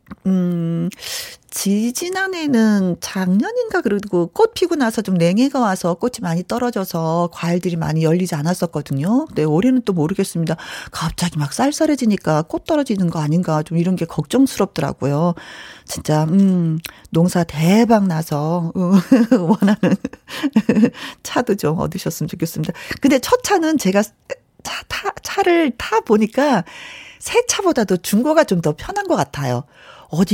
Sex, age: female, 40-59